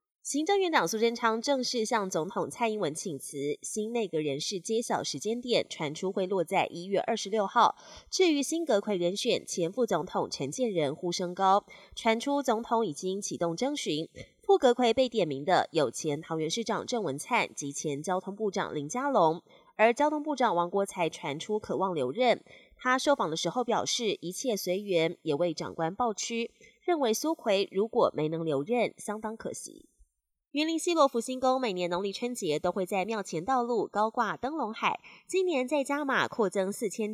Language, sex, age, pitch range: Chinese, female, 20-39, 175-245 Hz